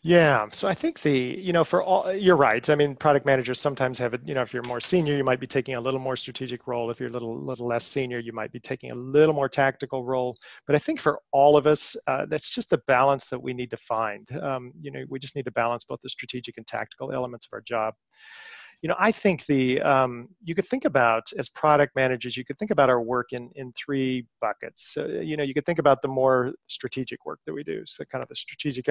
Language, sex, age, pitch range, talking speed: English, male, 40-59, 125-150 Hz, 255 wpm